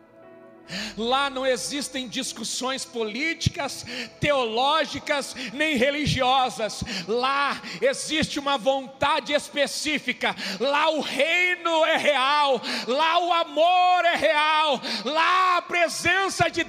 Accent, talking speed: Brazilian, 95 wpm